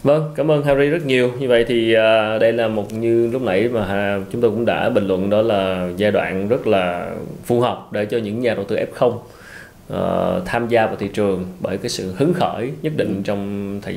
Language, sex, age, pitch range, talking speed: Vietnamese, male, 20-39, 95-120 Hz, 220 wpm